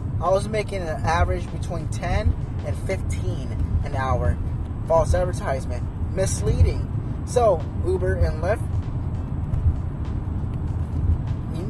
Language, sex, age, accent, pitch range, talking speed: English, male, 20-39, American, 90-110 Hz, 95 wpm